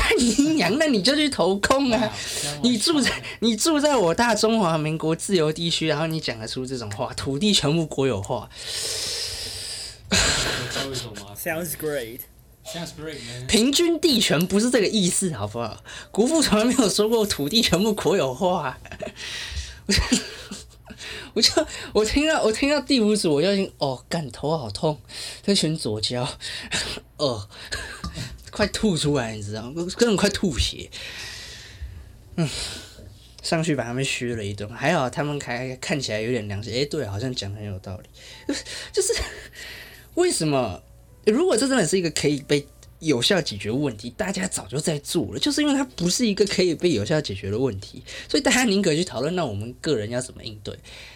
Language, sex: English, male